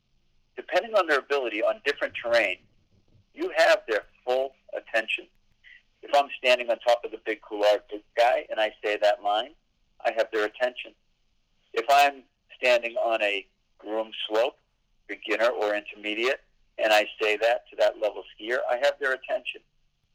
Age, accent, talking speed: 50-69, American, 160 wpm